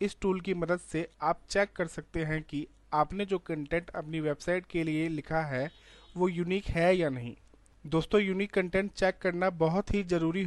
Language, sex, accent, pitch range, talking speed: Hindi, male, native, 145-190 Hz, 190 wpm